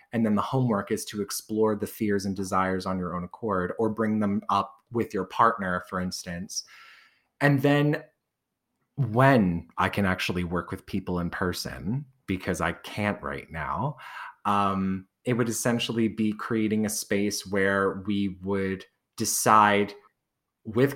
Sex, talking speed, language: male, 150 wpm, English